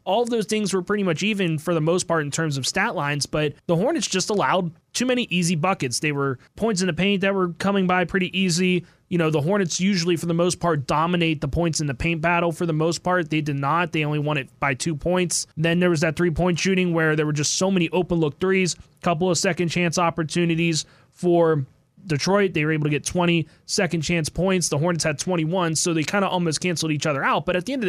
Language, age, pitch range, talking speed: English, 20-39, 155-185 Hz, 250 wpm